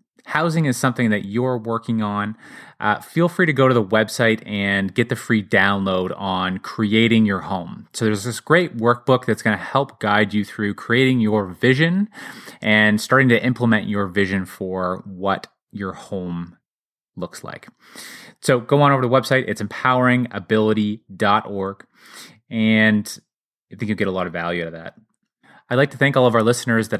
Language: English